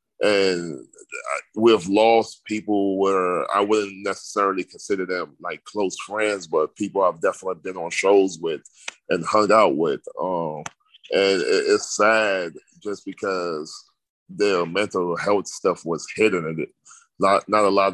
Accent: American